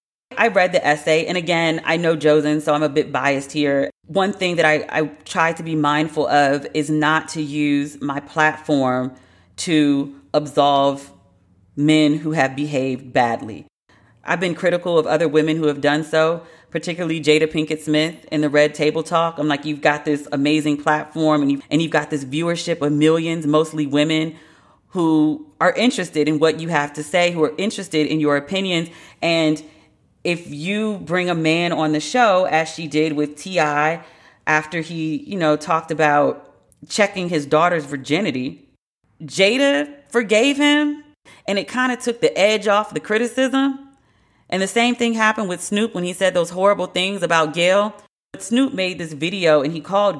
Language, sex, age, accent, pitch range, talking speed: English, female, 40-59, American, 150-180 Hz, 180 wpm